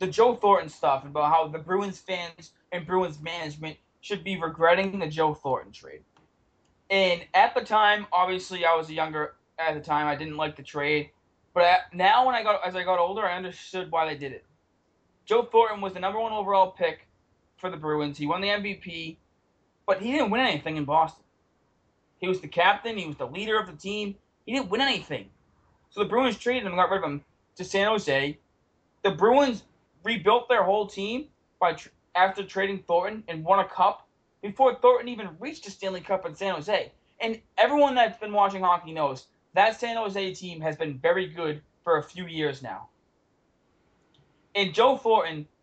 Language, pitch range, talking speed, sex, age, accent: English, 160-205 Hz, 195 wpm, male, 20-39, American